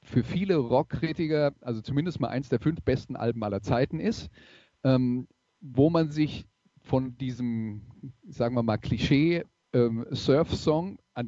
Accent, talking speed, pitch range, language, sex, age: German, 145 wpm, 125-150 Hz, German, male, 40-59